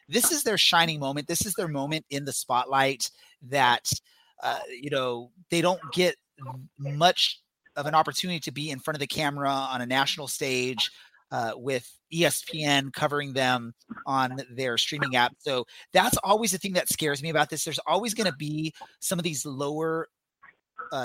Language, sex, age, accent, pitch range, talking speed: English, male, 30-49, American, 130-165 Hz, 180 wpm